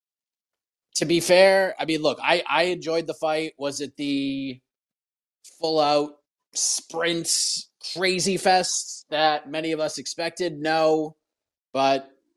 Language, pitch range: English, 125-165 Hz